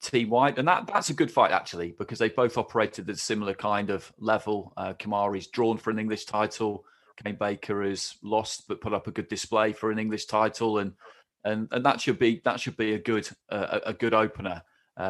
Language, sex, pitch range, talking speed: English, male, 105-125 Hz, 225 wpm